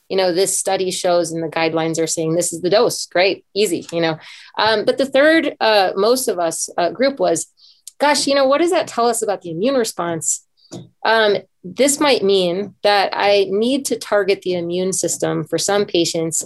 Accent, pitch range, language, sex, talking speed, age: American, 185-250 Hz, English, female, 205 wpm, 30-49